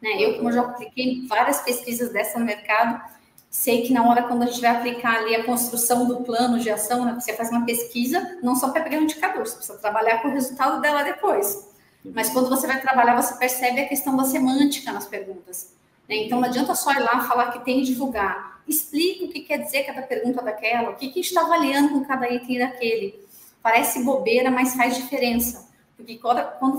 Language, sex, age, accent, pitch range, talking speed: Portuguese, female, 30-49, Brazilian, 225-275 Hz, 205 wpm